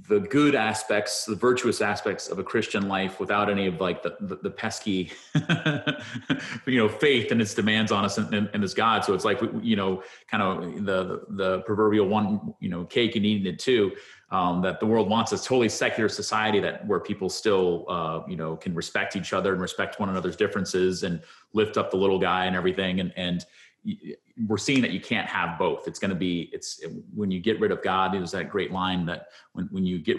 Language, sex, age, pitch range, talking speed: English, male, 30-49, 95-120 Hz, 225 wpm